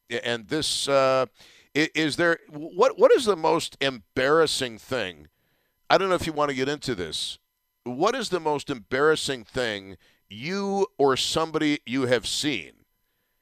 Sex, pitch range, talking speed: male, 100-140 Hz, 170 wpm